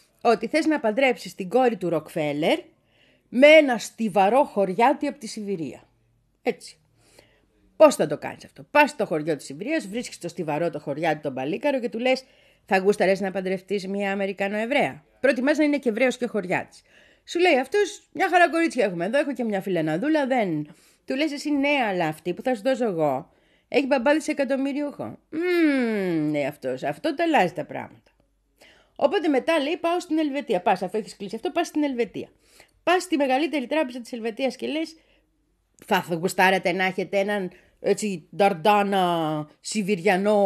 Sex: female